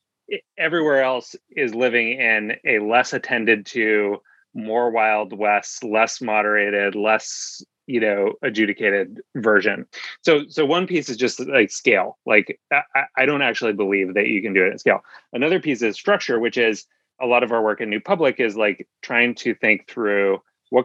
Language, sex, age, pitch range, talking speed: English, male, 30-49, 100-125 Hz, 175 wpm